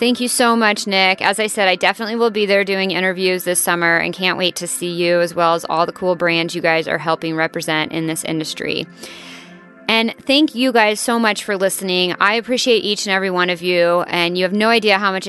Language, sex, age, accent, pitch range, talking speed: English, female, 30-49, American, 175-215 Hz, 240 wpm